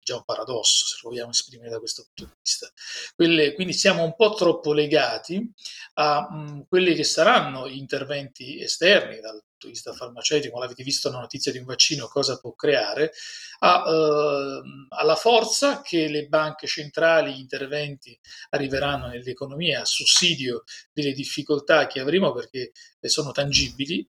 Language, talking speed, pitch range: Italian, 155 wpm, 140-170 Hz